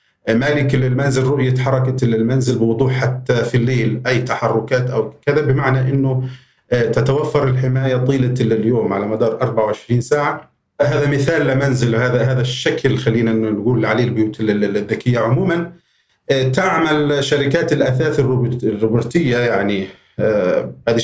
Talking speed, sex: 120 wpm, male